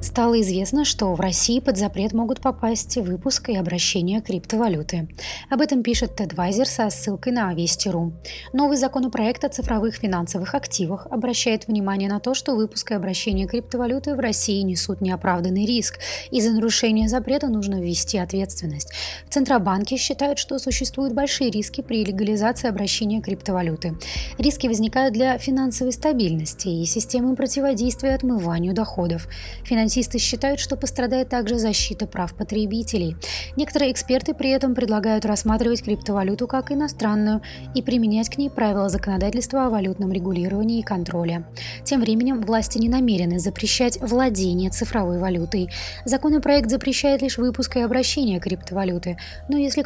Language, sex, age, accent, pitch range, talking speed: Russian, female, 30-49, native, 190-255 Hz, 140 wpm